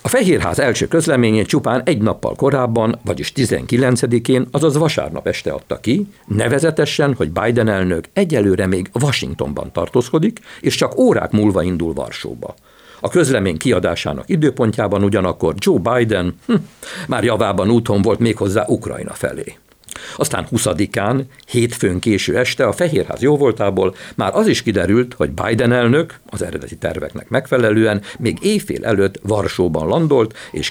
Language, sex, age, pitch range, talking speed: Hungarian, male, 60-79, 100-135 Hz, 135 wpm